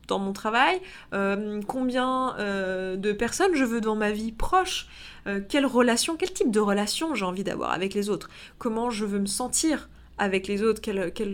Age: 20-39